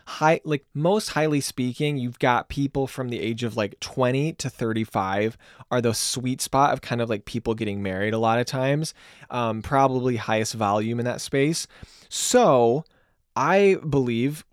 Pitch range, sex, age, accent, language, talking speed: 125-155 Hz, male, 20-39, American, English, 170 wpm